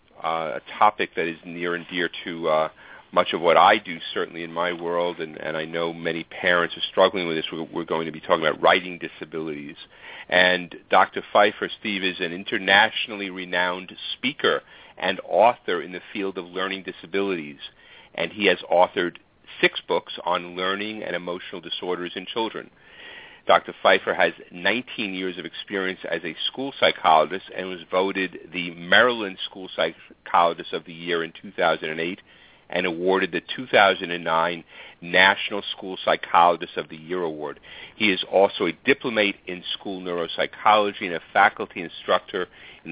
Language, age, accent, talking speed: English, 40-59, American, 160 wpm